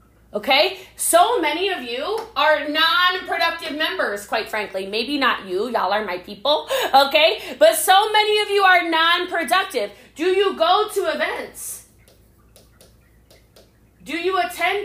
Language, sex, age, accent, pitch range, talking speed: English, female, 30-49, American, 275-385 Hz, 135 wpm